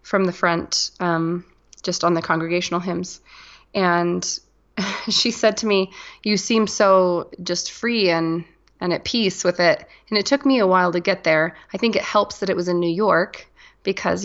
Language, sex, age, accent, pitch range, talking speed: English, female, 20-39, American, 170-190 Hz, 190 wpm